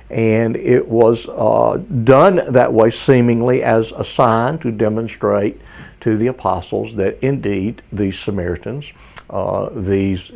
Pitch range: 105-125 Hz